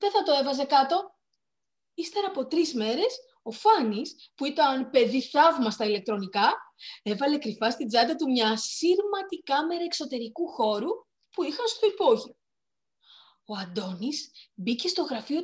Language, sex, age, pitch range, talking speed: Greek, female, 30-49, 225-330 Hz, 140 wpm